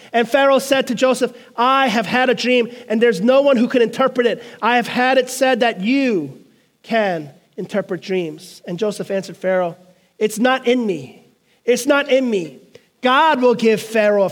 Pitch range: 195-255 Hz